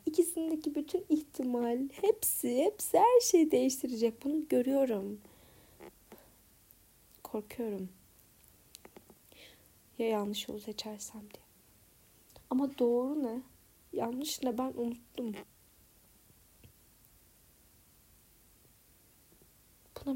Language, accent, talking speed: Turkish, native, 70 wpm